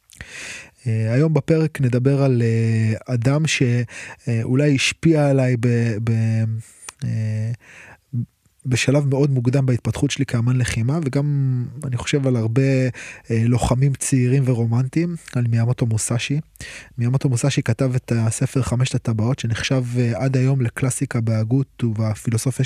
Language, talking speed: Hebrew, 125 wpm